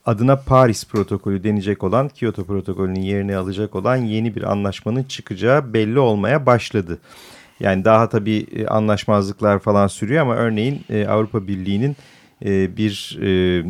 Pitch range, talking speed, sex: 95-120 Hz, 125 wpm, male